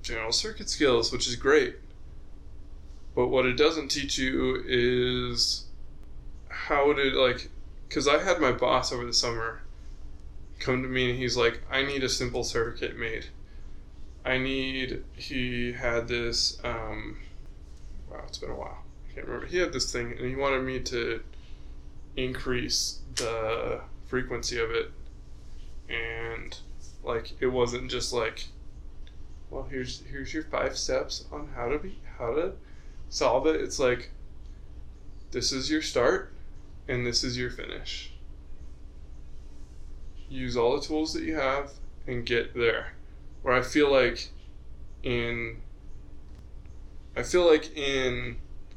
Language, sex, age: English, male, 20-39